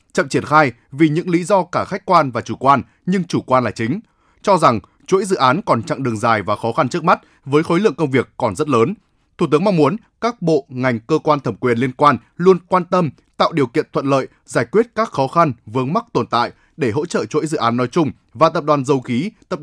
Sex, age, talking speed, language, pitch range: male, 20-39, 255 wpm, Vietnamese, 125-175 Hz